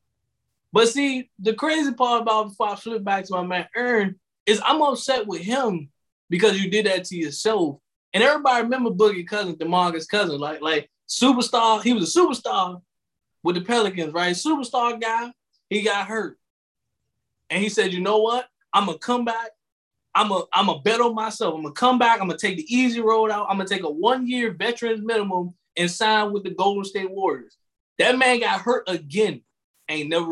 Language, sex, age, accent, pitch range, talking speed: English, male, 20-39, American, 190-255 Hz, 200 wpm